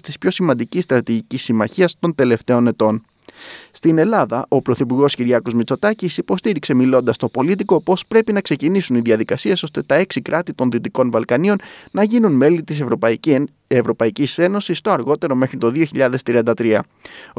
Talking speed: 150 wpm